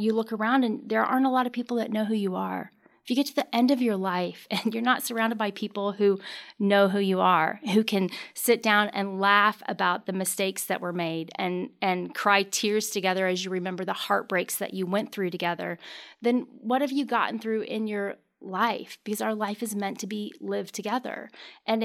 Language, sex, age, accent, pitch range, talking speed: English, female, 30-49, American, 190-225 Hz, 220 wpm